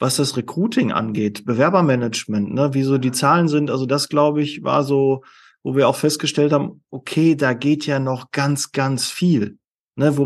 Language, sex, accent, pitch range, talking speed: German, male, German, 140-180 Hz, 185 wpm